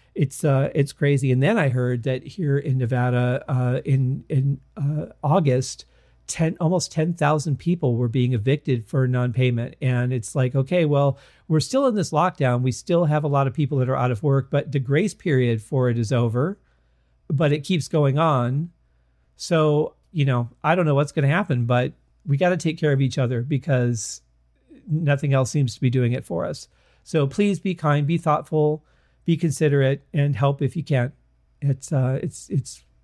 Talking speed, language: 195 wpm, English